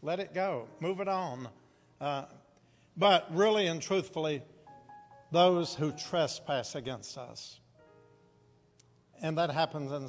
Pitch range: 150-190 Hz